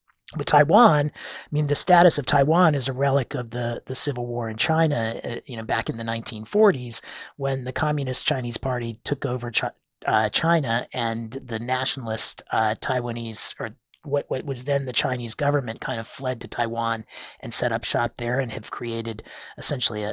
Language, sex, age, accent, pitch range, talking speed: English, male, 40-59, American, 115-140 Hz, 175 wpm